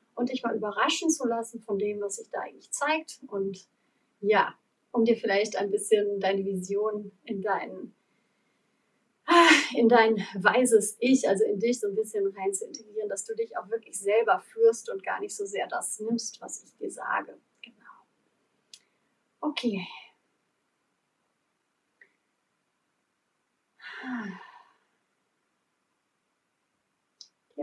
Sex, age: female, 30-49